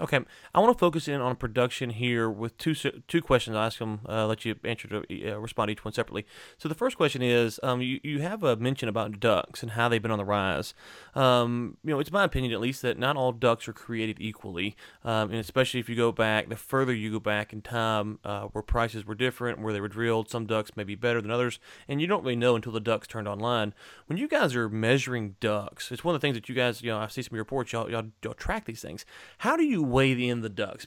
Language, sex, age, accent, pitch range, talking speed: English, male, 30-49, American, 110-135 Hz, 260 wpm